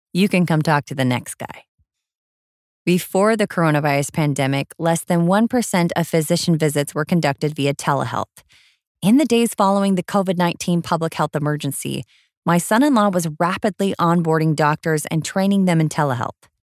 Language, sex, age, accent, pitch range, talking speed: English, female, 20-39, American, 155-200 Hz, 160 wpm